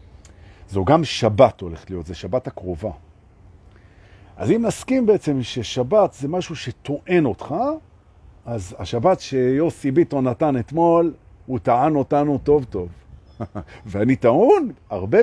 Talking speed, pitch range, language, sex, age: 120 wpm, 95-150 Hz, Hebrew, male, 50-69